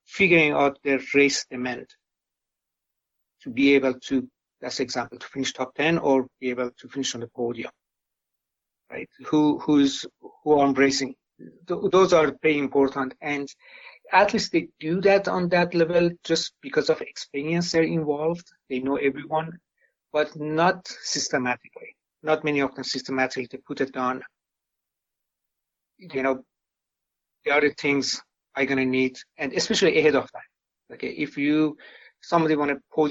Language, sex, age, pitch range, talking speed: English, male, 60-79, 135-160 Hz, 150 wpm